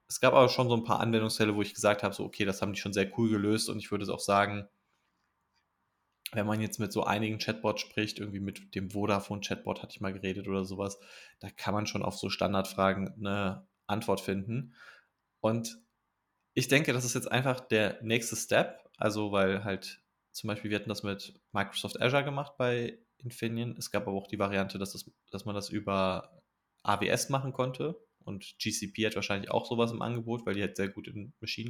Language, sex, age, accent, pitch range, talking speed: German, male, 20-39, German, 100-115 Hz, 205 wpm